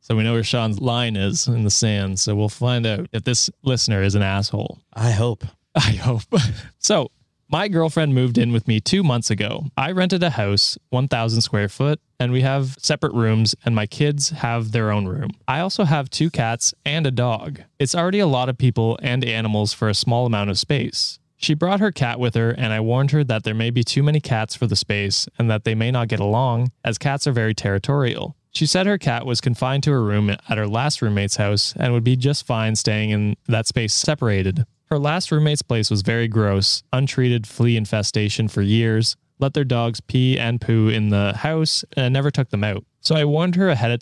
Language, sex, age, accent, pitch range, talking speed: English, male, 20-39, American, 110-140 Hz, 220 wpm